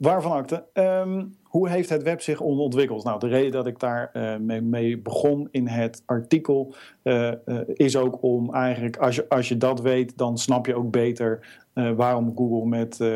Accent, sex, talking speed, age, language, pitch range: Dutch, male, 190 wpm, 50-69, Dutch, 115-130 Hz